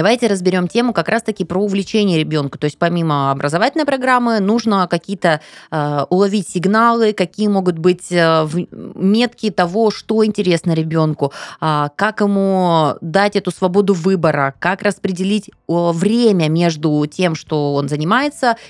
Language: Russian